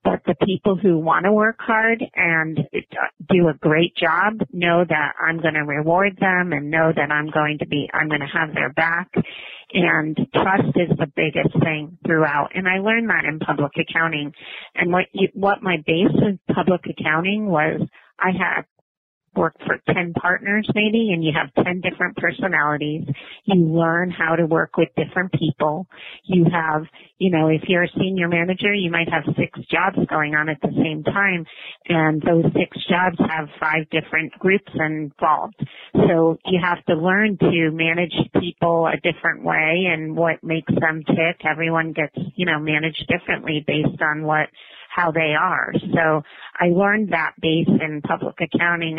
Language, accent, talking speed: English, American, 175 wpm